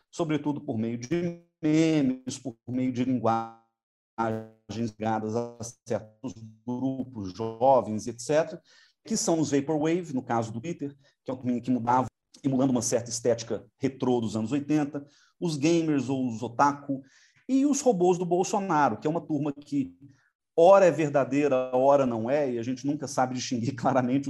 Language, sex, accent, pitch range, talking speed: Portuguese, male, Brazilian, 120-155 Hz, 160 wpm